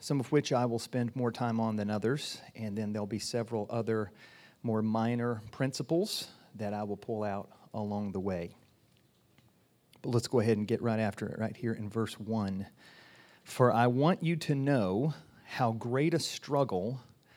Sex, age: male, 40-59